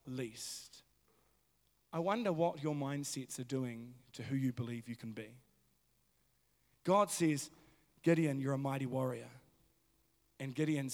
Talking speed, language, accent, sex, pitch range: 130 wpm, English, Australian, male, 155-230 Hz